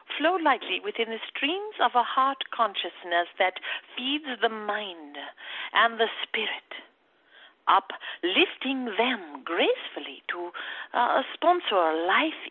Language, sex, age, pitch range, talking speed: English, female, 50-69, 225-355 Hz, 115 wpm